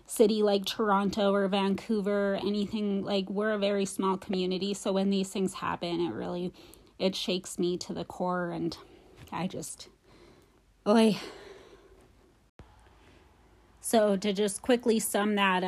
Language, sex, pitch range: English, female, 185-210 Hz